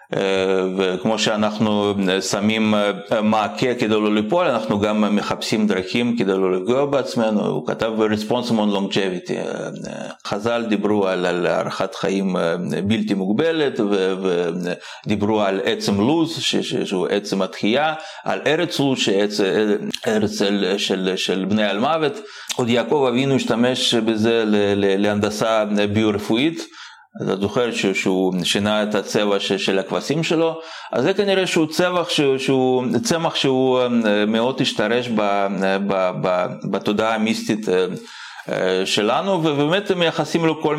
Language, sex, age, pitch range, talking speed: Hebrew, male, 30-49, 100-135 Hz, 120 wpm